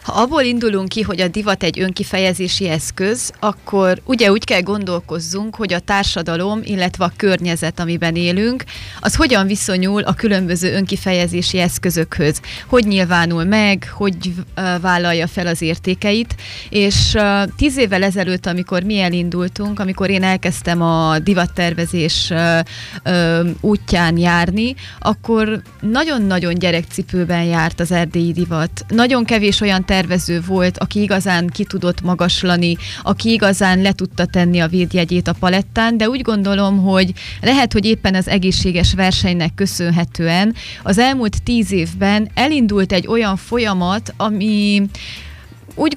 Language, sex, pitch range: Hungarian, female, 175-205 Hz